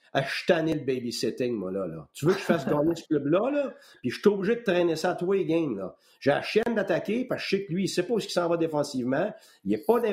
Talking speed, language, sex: 295 wpm, French, male